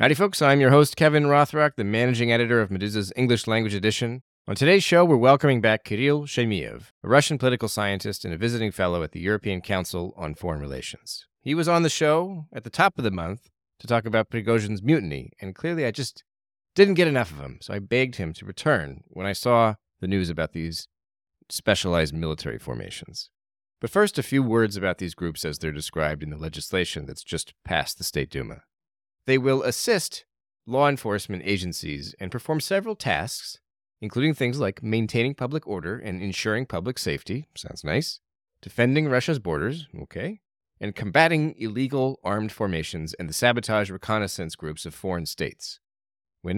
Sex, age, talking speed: male, 30-49, 180 wpm